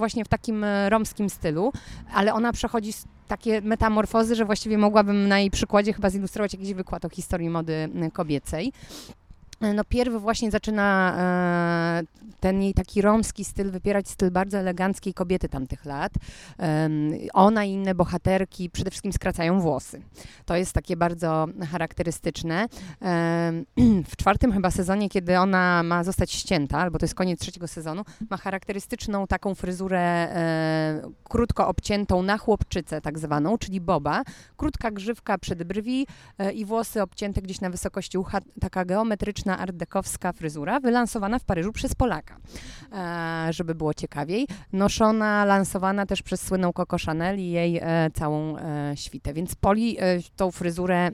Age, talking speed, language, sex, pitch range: 30-49, 150 wpm, Polish, female, 170-205 Hz